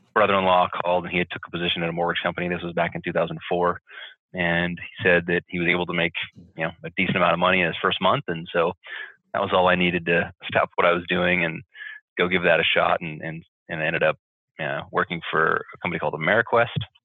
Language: English